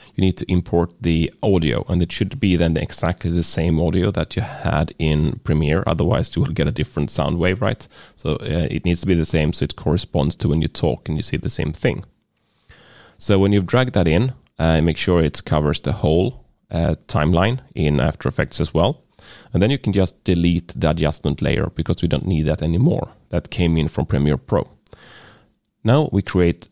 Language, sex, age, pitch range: English, male, 30-49, 80-100 Hz